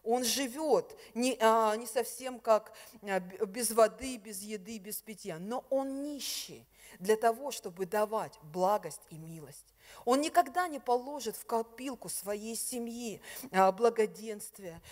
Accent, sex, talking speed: native, female, 125 wpm